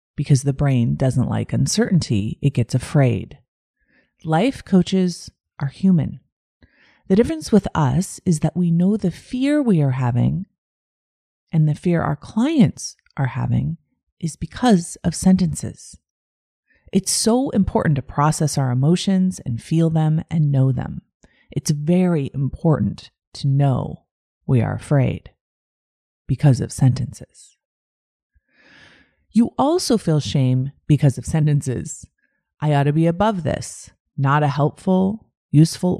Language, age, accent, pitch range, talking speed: English, 30-49, American, 130-185 Hz, 130 wpm